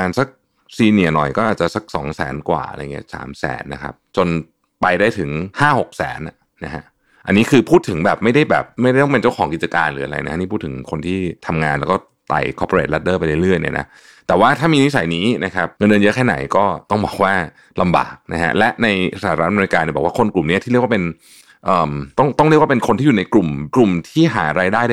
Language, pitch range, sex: Thai, 85-120 Hz, male